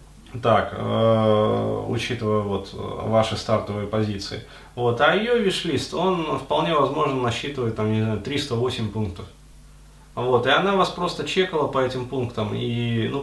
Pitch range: 110-140 Hz